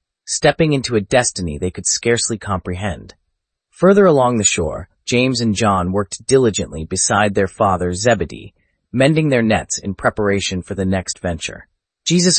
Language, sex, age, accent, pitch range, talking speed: English, male, 30-49, American, 95-130 Hz, 150 wpm